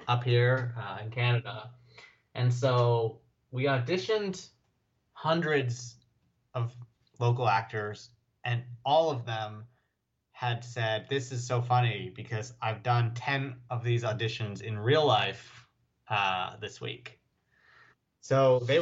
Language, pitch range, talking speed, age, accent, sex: English, 115-125 Hz, 120 wpm, 30-49, American, male